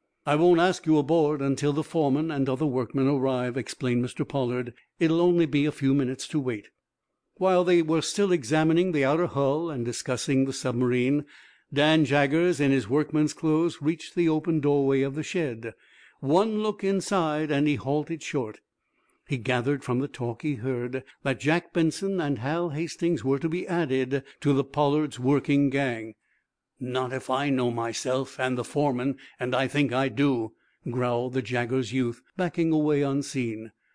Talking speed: 170 wpm